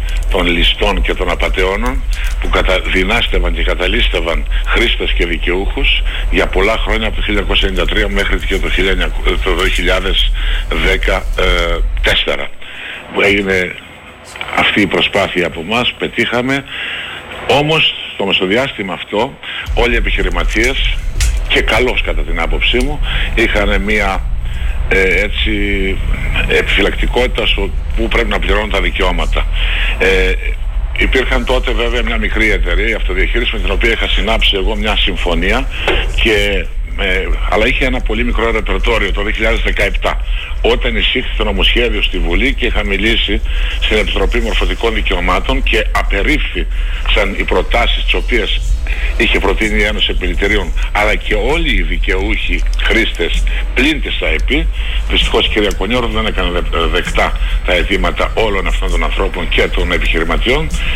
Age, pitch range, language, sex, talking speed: 50-69, 75-110 Hz, Greek, male, 130 wpm